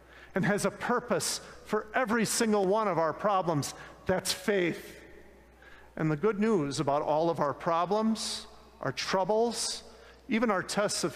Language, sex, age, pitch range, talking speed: English, male, 50-69, 170-230 Hz, 150 wpm